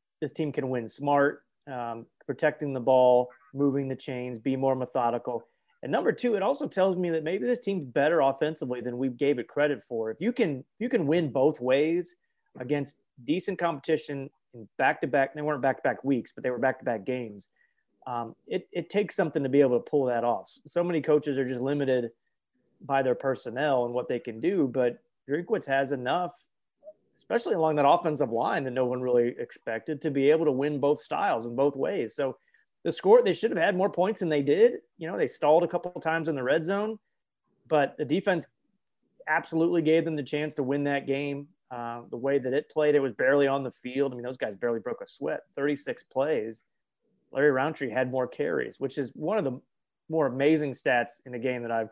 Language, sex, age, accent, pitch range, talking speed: English, male, 30-49, American, 125-160 Hz, 215 wpm